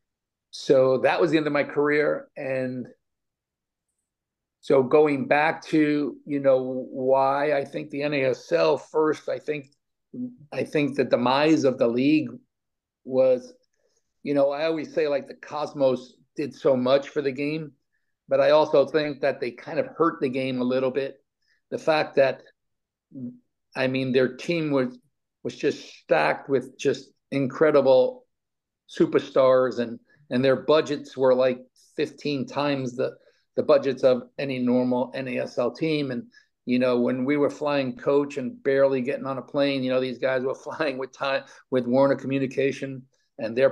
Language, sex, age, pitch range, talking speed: English, male, 50-69, 130-145 Hz, 160 wpm